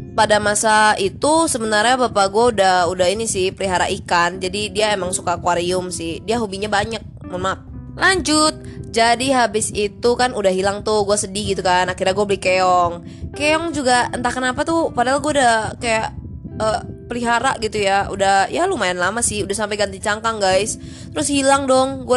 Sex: female